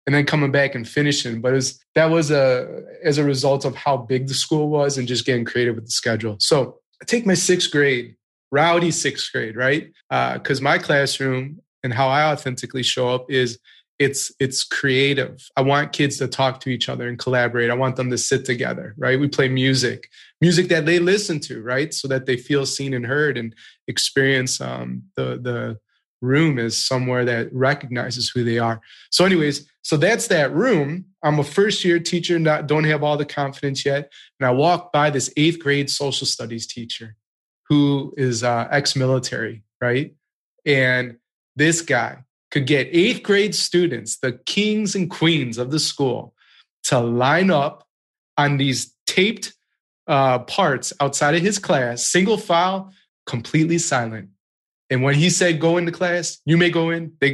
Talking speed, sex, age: 180 wpm, male, 20-39